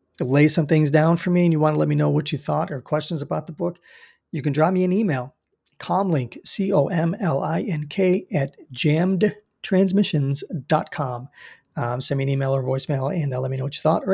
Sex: male